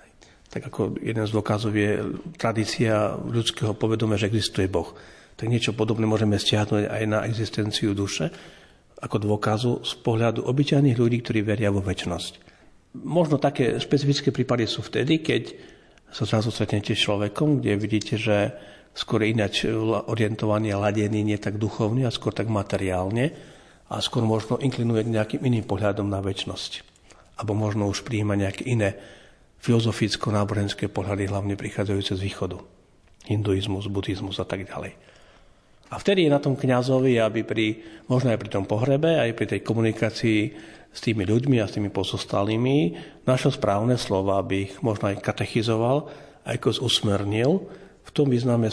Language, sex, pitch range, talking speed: Slovak, male, 100-120 Hz, 150 wpm